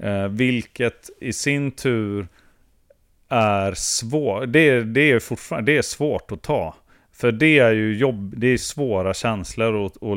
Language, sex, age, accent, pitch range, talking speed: Swedish, male, 40-59, native, 95-120 Hz, 140 wpm